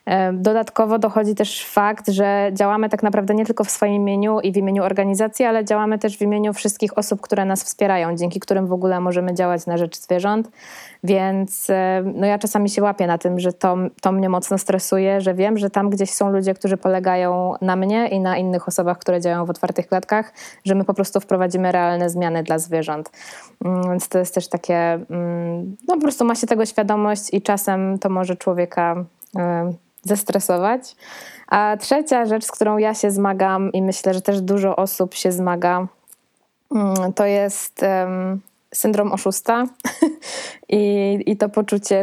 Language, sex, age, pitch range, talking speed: Polish, female, 20-39, 180-210 Hz, 170 wpm